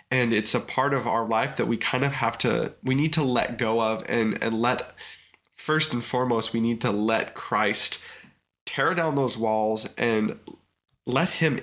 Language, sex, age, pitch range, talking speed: English, male, 20-39, 110-130 Hz, 190 wpm